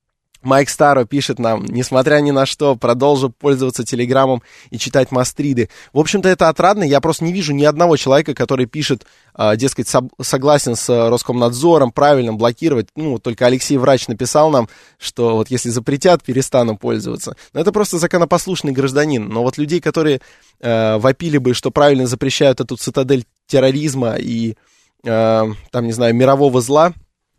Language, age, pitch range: Russian, 20-39, 120-145 Hz